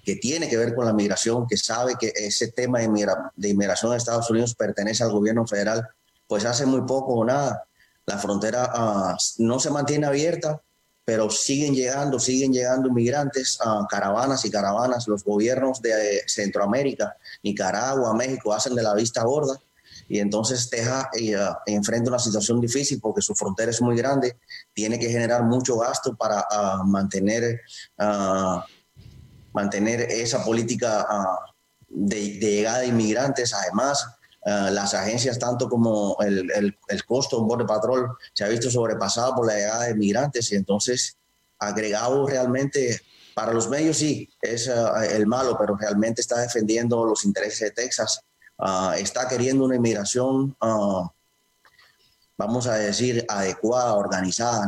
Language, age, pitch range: Spanish, 30-49, 105-125 Hz